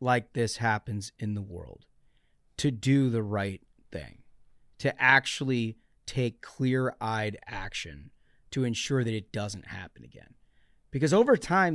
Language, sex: English, male